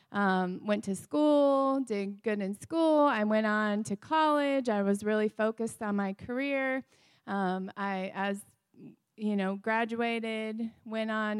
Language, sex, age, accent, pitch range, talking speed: English, female, 30-49, American, 195-235 Hz, 140 wpm